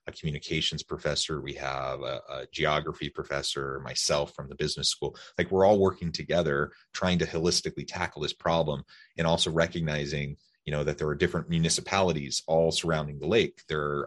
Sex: male